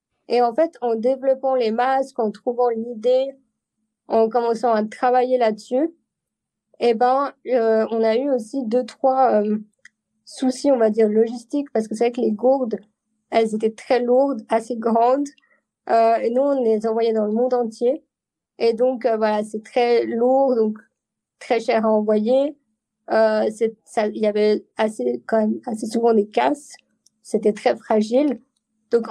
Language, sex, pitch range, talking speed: French, female, 220-255 Hz, 165 wpm